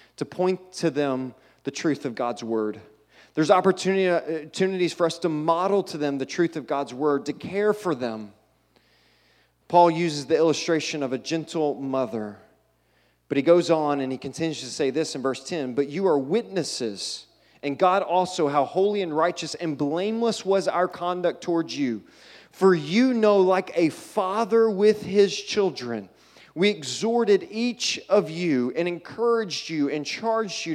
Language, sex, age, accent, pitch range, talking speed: English, male, 30-49, American, 130-175 Hz, 165 wpm